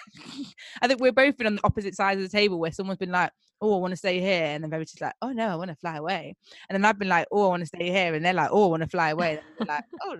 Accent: British